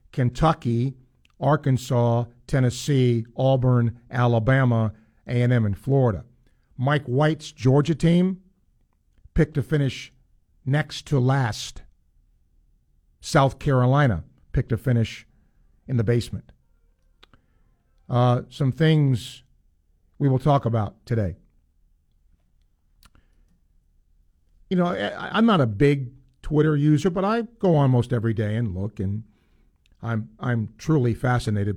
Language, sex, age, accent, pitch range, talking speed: English, male, 50-69, American, 80-135 Hz, 110 wpm